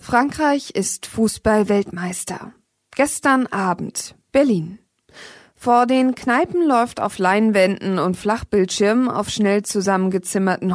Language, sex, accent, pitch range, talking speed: German, female, German, 185-245 Hz, 95 wpm